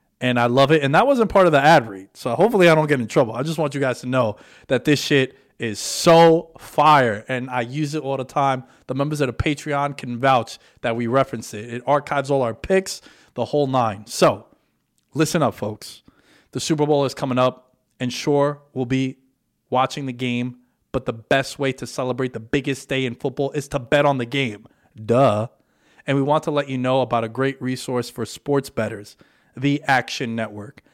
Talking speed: 215 wpm